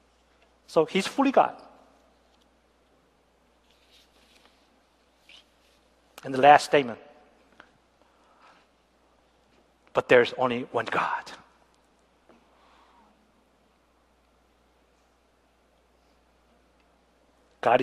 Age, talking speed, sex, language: 50-69, 45 wpm, male, English